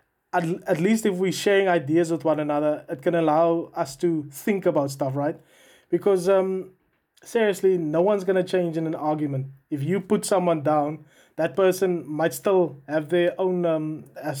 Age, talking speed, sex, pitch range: 20-39, 185 wpm, male, 155-180 Hz